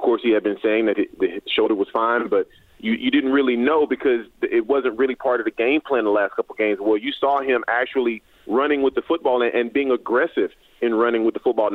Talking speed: 245 wpm